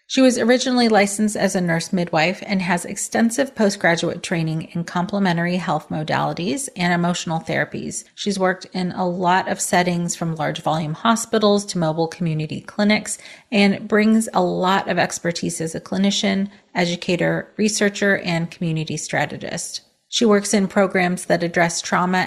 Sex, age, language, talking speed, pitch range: female, 30-49, English, 150 wpm, 170-200 Hz